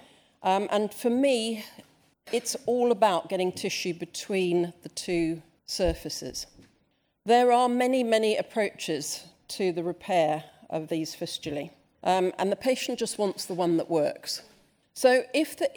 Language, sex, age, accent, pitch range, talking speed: English, female, 40-59, British, 165-225 Hz, 140 wpm